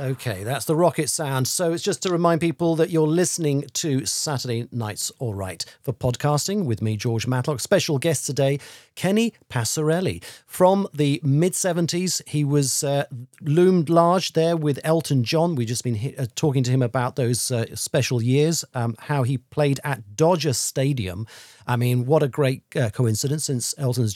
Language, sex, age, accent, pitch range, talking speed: English, male, 40-59, British, 120-160 Hz, 175 wpm